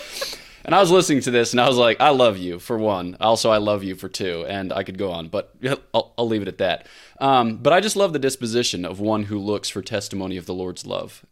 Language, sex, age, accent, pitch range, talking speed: English, male, 20-39, American, 95-115 Hz, 265 wpm